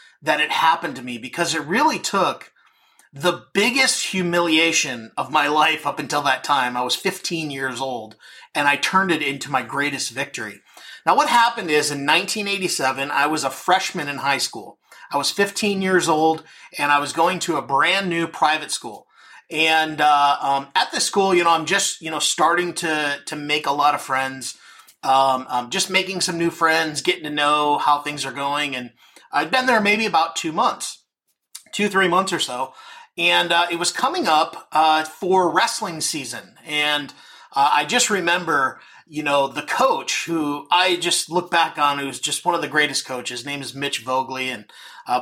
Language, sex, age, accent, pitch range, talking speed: English, male, 30-49, American, 140-175 Hz, 195 wpm